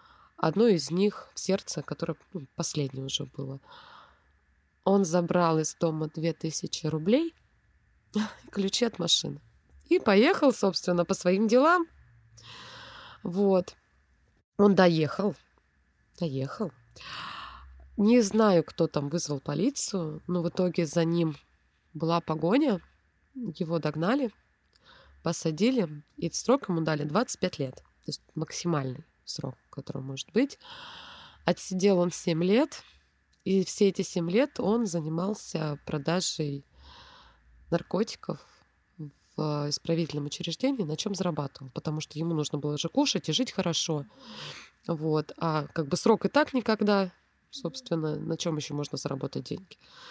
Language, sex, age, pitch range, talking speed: Russian, female, 20-39, 150-205 Hz, 120 wpm